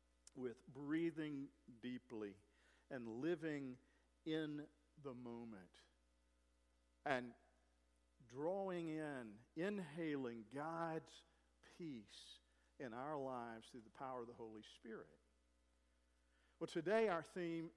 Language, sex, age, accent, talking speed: English, male, 50-69, American, 95 wpm